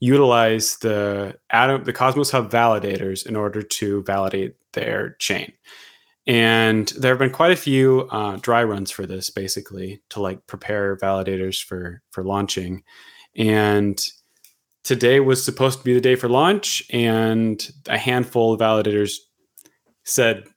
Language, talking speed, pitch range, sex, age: English, 145 wpm, 100-125 Hz, male, 20-39